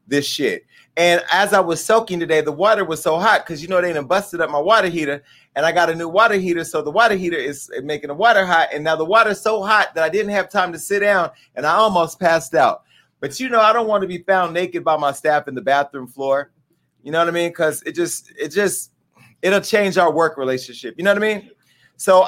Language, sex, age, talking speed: English, male, 30-49, 260 wpm